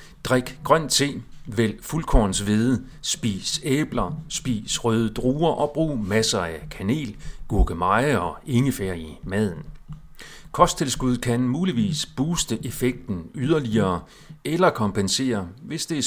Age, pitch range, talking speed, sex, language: 40-59, 105-135 Hz, 115 wpm, male, Danish